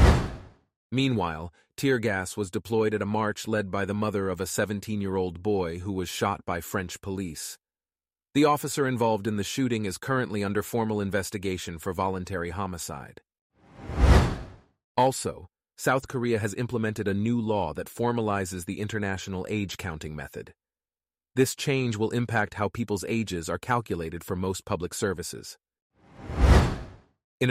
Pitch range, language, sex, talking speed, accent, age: 95-115 Hz, English, male, 140 wpm, American, 30-49